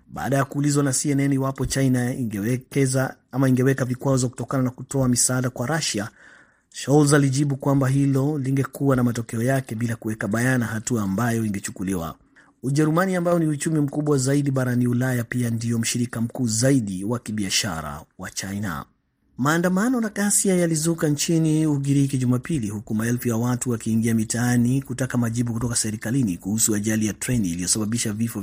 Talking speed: 150 wpm